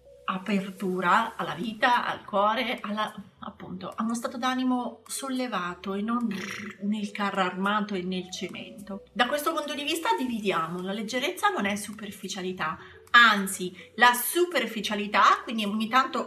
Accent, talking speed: native, 135 wpm